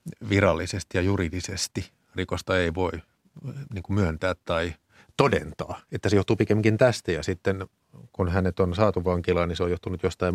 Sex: male